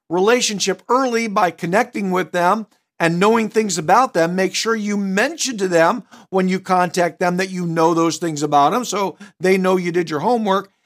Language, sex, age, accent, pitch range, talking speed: English, male, 50-69, American, 155-210 Hz, 195 wpm